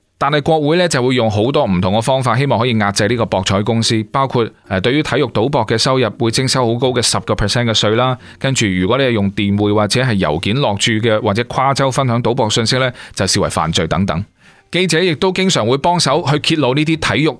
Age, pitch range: 20-39, 105-145 Hz